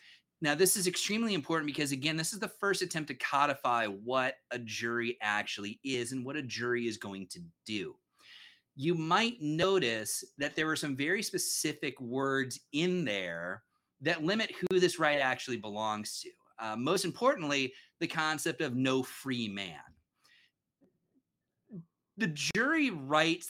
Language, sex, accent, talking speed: English, male, American, 150 wpm